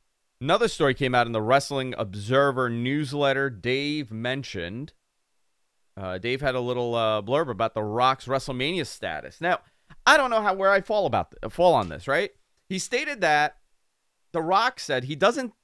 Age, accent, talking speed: 30-49, American, 175 wpm